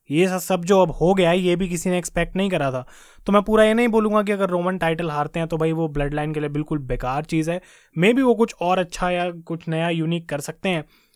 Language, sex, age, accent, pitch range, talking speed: Hindi, male, 20-39, native, 155-185 Hz, 270 wpm